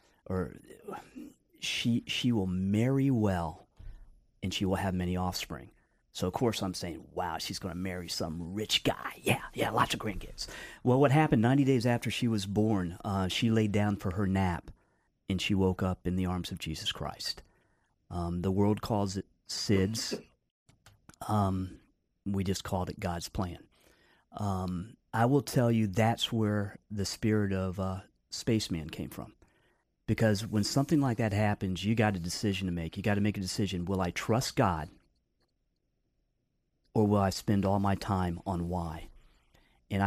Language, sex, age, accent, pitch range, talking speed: English, male, 40-59, American, 90-110 Hz, 170 wpm